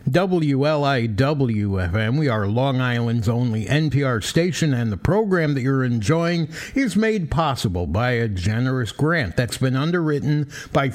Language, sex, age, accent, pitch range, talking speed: English, male, 60-79, American, 115-150 Hz, 135 wpm